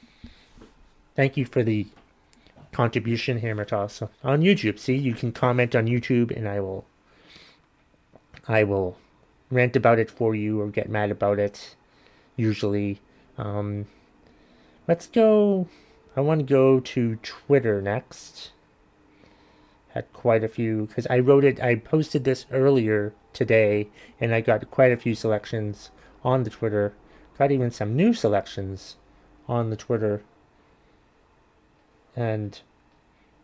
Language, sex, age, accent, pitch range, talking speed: English, male, 30-49, American, 105-130 Hz, 135 wpm